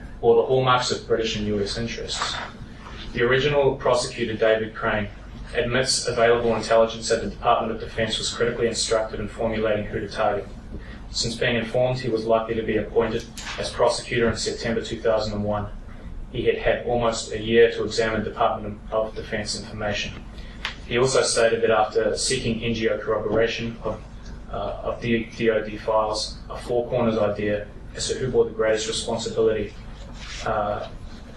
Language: English